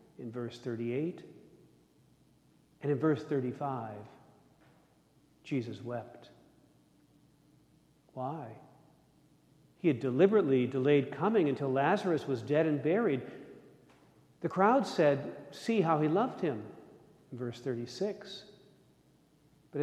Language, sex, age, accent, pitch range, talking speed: English, male, 50-69, American, 135-170 Hz, 100 wpm